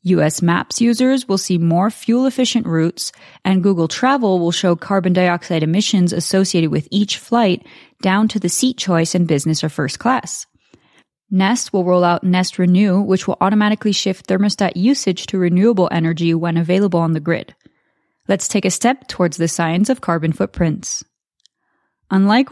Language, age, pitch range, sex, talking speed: English, 20-39, 170-220 Hz, female, 165 wpm